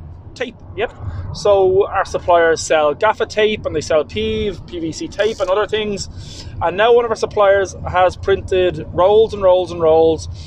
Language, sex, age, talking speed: English, male, 20-39, 170 wpm